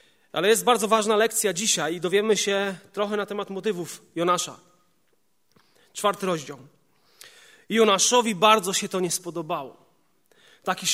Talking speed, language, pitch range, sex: 130 wpm, Polish, 175-230 Hz, male